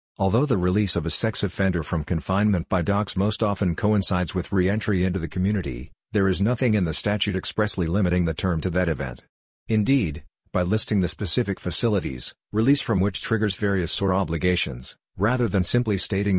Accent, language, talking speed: American, English, 180 wpm